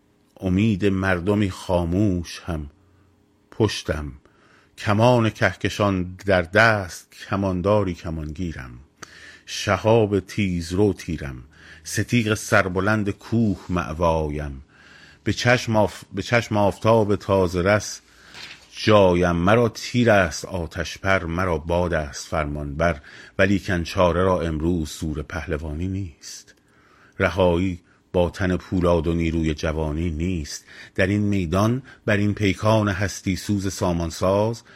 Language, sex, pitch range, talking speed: Persian, male, 85-105 Hz, 105 wpm